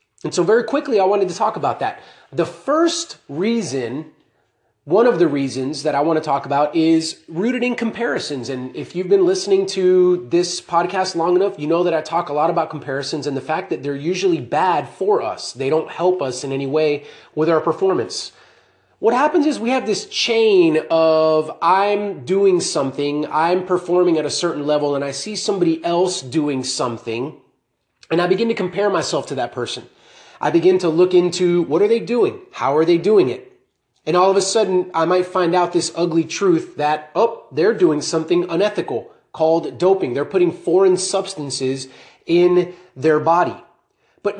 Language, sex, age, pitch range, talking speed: English, male, 30-49, 165-220 Hz, 190 wpm